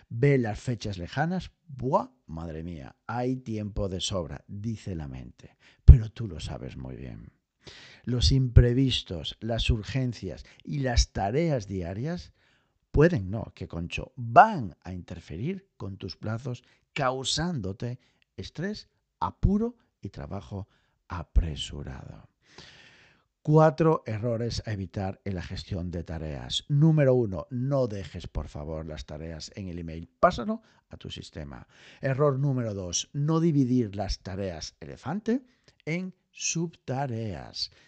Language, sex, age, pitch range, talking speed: Spanish, male, 50-69, 90-140 Hz, 125 wpm